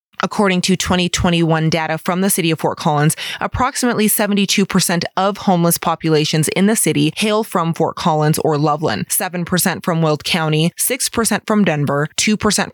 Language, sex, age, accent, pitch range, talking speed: English, female, 20-39, American, 165-200 Hz, 150 wpm